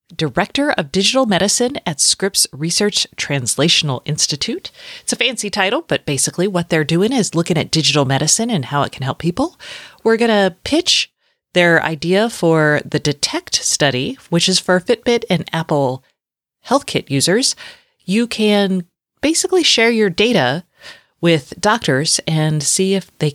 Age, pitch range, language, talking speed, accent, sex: 30-49, 150-225 Hz, English, 150 wpm, American, female